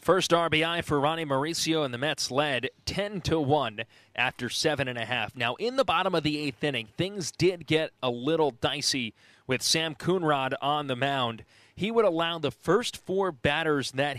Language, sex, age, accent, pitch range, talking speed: English, male, 30-49, American, 120-160 Hz, 170 wpm